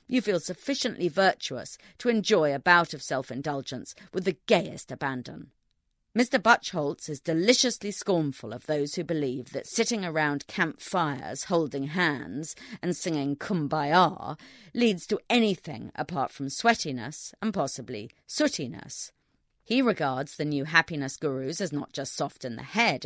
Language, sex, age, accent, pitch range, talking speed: English, female, 40-59, British, 135-190 Hz, 140 wpm